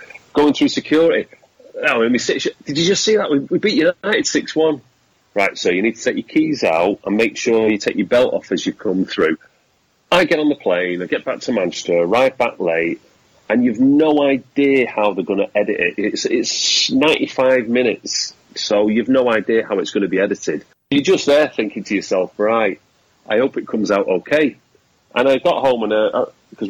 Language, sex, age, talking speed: English, male, 30-49, 200 wpm